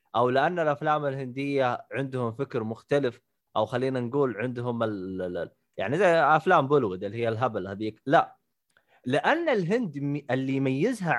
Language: Arabic